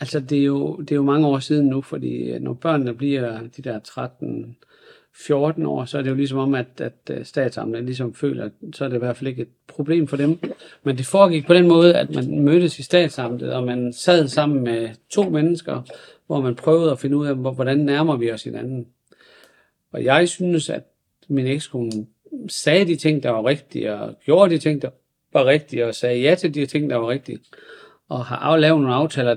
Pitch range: 125-160 Hz